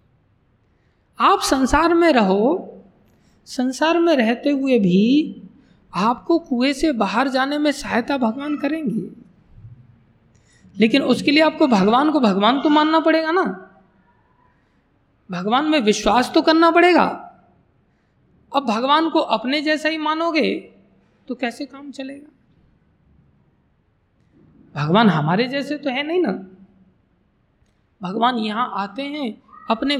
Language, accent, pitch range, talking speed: Hindi, native, 215-315 Hz, 115 wpm